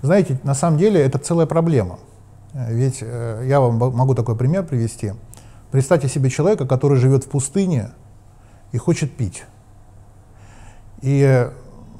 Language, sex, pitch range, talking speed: Russian, male, 115-155 Hz, 130 wpm